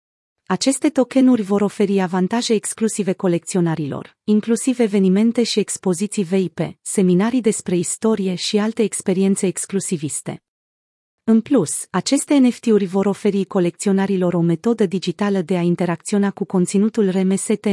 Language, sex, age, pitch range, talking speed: Romanian, female, 30-49, 180-220 Hz, 120 wpm